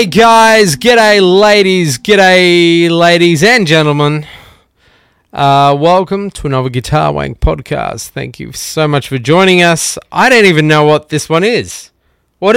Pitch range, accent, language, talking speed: 145-220 Hz, Australian, English, 145 wpm